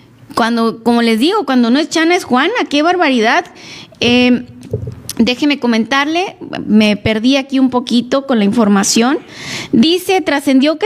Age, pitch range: 20-39, 225-280 Hz